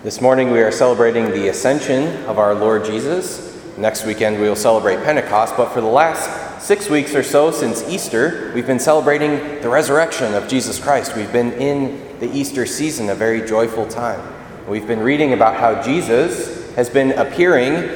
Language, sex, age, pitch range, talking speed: English, male, 30-49, 110-145 Hz, 180 wpm